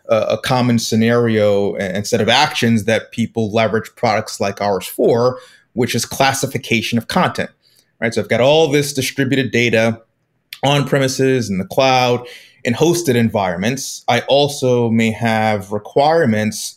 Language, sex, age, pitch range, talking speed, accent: English, male, 30-49, 110-135 Hz, 140 wpm, American